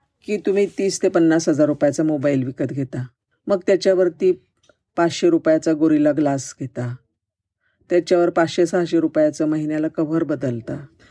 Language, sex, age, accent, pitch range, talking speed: Marathi, female, 50-69, native, 140-180 Hz, 125 wpm